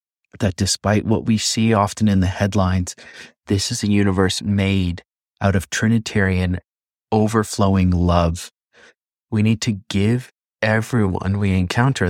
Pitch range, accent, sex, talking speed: 90-110 Hz, American, male, 130 wpm